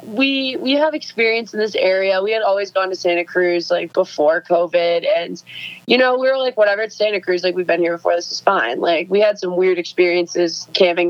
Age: 20-39